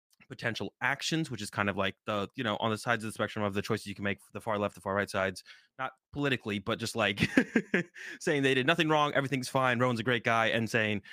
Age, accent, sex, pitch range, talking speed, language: 20-39, American, male, 105-125 Hz, 255 wpm, English